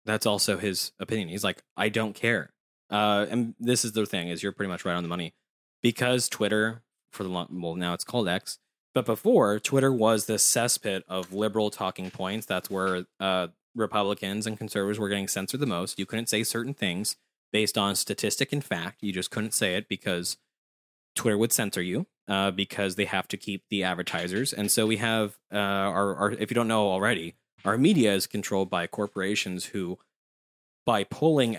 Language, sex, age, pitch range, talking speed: English, male, 20-39, 95-115 Hz, 195 wpm